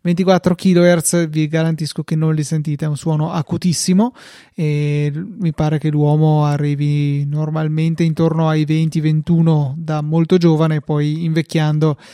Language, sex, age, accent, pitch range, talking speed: Italian, male, 20-39, native, 150-165 Hz, 140 wpm